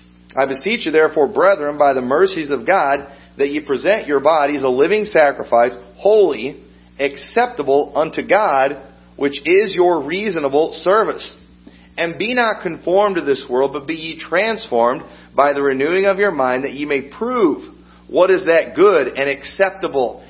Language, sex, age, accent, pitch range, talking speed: English, male, 40-59, American, 130-175 Hz, 165 wpm